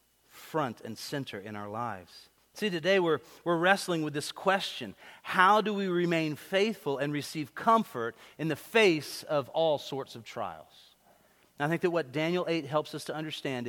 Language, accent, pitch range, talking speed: English, American, 120-180 Hz, 180 wpm